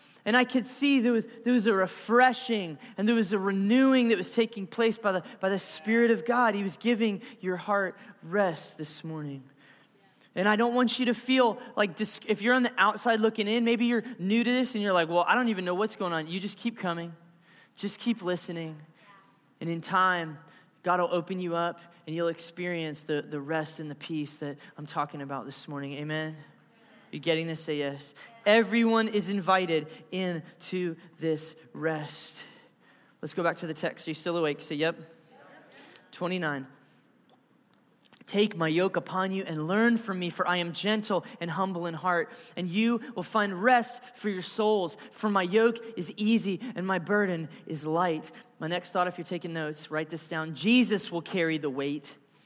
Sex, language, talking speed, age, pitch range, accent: male, English, 195 wpm, 20-39, 165-225 Hz, American